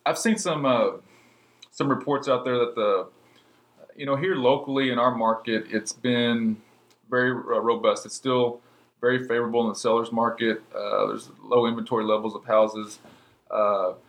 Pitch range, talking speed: 110-125 Hz, 160 wpm